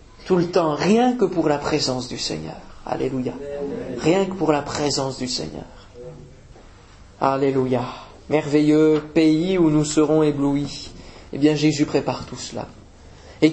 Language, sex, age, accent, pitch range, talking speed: French, male, 40-59, French, 110-165 Hz, 140 wpm